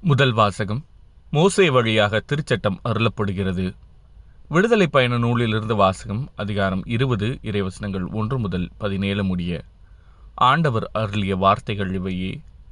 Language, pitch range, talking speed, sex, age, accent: Tamil, 95-125 Hz, 100 wpm, male, 30-49, native